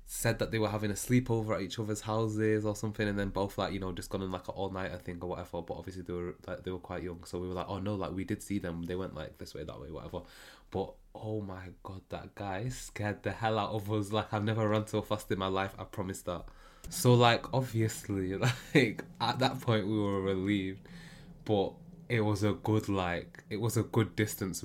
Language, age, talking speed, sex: English, 20-39, 245 wpm, male